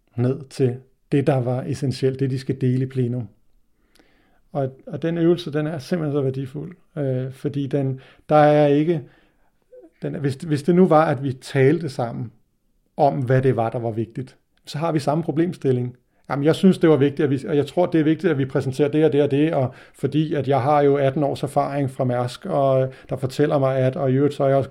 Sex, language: male, Danish